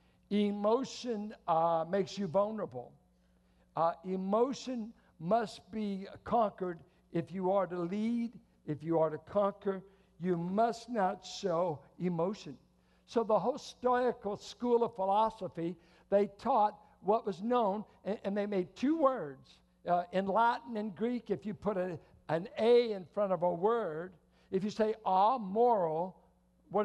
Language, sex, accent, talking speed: English, male, American, 145 wpm